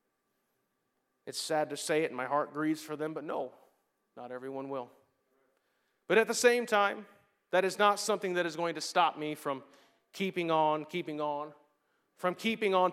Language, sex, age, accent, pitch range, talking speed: English, male, 30-49, American, 175-225 Hz, 180 wpm